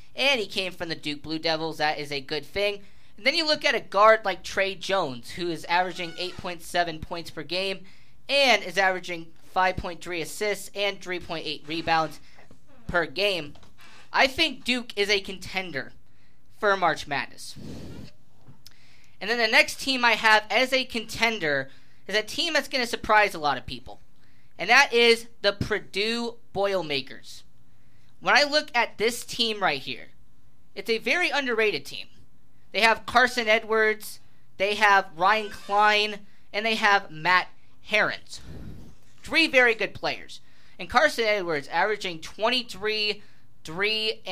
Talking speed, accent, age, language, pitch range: 150 wpm, American, 20-39, English, 165-225 Hz